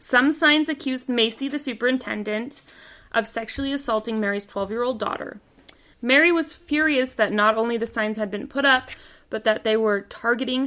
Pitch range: 205-265 Hz